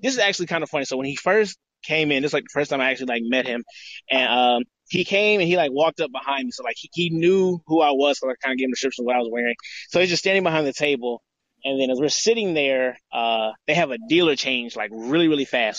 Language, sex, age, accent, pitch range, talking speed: English, male, 20-39, American, 130-165 Hz, 295 wpm